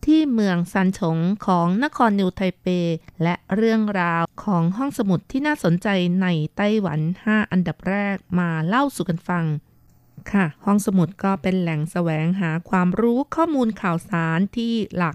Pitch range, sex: 175-215 Hz, female